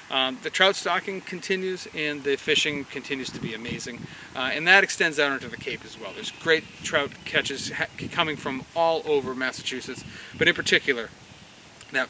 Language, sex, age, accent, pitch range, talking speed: English, male, 30-49, American, 135-170 Hz, 175 wpm